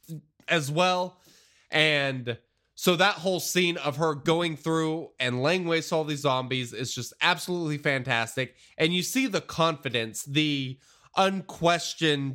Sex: male